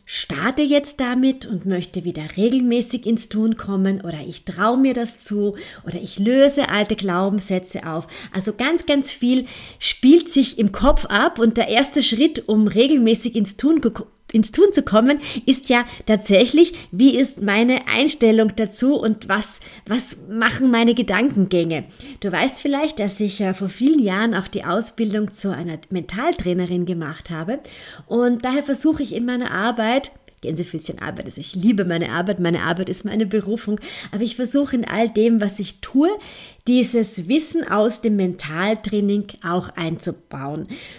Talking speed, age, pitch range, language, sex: 160 wpm, 30-49, 195-250 Hz, German, female